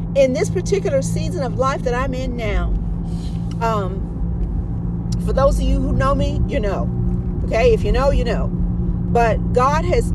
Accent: American